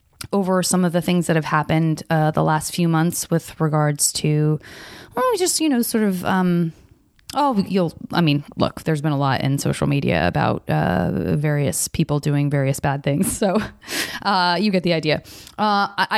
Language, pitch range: English, 155-190 Hz